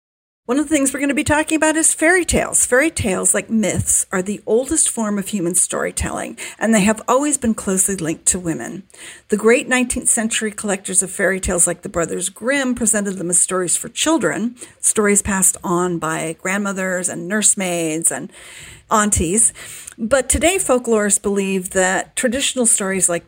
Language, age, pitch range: English, 50-69, 185-240 Hz